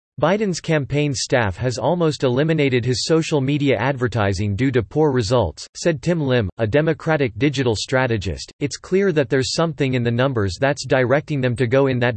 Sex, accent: male, American